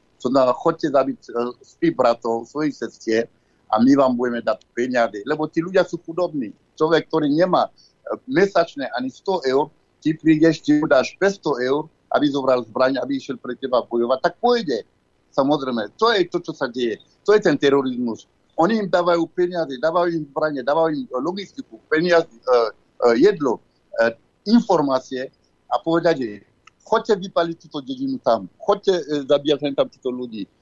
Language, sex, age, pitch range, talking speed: Slovak, male, 60-79, 140-185 Hz, 160 wpm